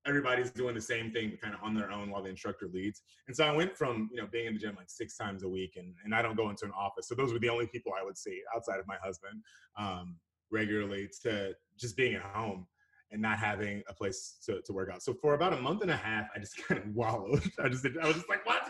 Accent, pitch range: American, 105-140 Hz